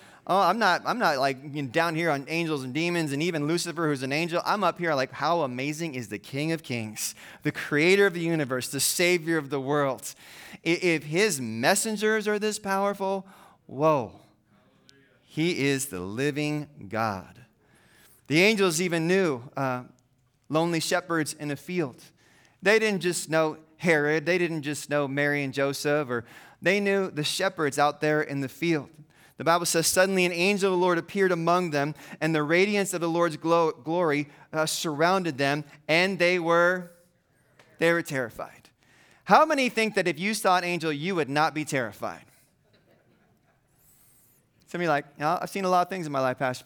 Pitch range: 140-175 Hz